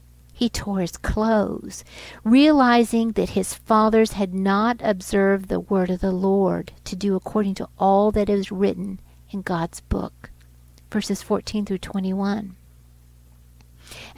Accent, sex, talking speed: American, female, 130 wpm